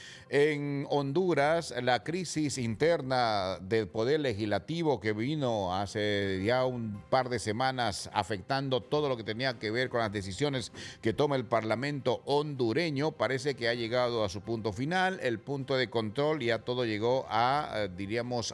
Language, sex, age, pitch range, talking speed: English, male, 50-69, 110-140 Hz, 155 wpm